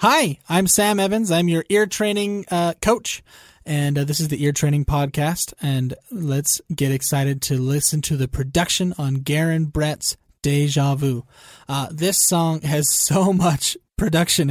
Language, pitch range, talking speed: English, 130-165 Hz, 160 wpm